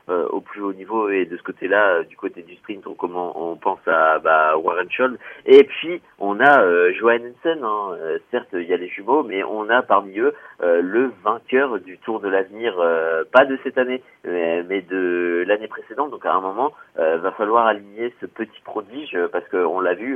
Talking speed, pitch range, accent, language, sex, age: 220 wpm, 85-130 Hz, French, French, male, 40-59